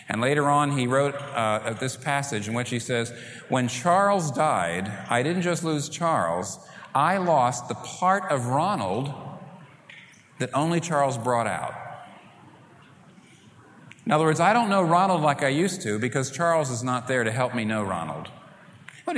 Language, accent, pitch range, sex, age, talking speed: English, American, 120-180 Hz, male, 40-59, 165 wpm